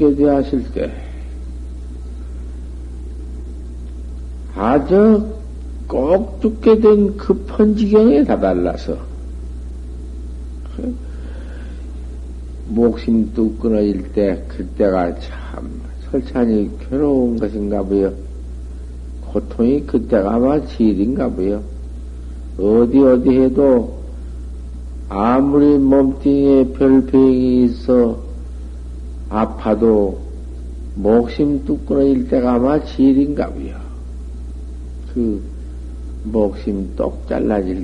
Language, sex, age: Korean, male, 60-79